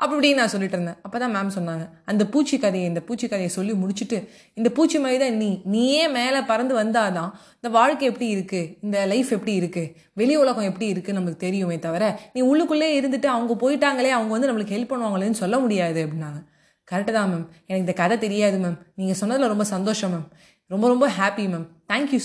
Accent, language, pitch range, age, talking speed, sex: native, Tamil, 185-235 Hz, 20-39, 185 wpm, female